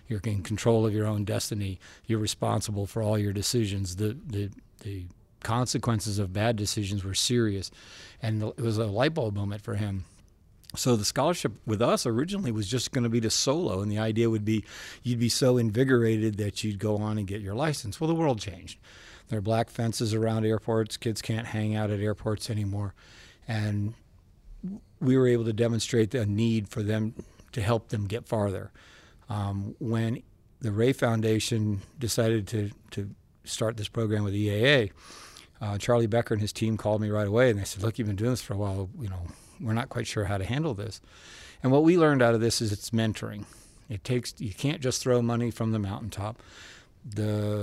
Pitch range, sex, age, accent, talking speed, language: 105-120 Hz, male, 50-69, American, 195 wpm, English